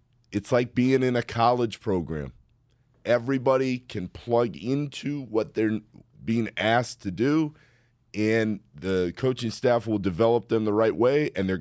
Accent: American